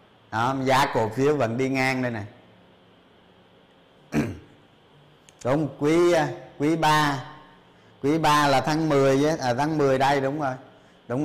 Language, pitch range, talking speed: Vietnamese, 135-190 Hz, 135 wpm